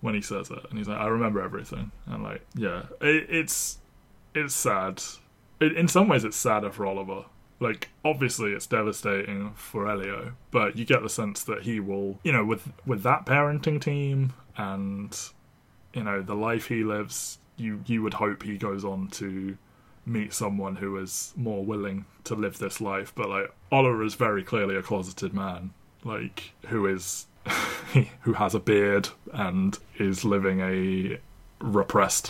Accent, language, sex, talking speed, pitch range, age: British, English, male, 170 wpm, 100-125 Hz, 20-39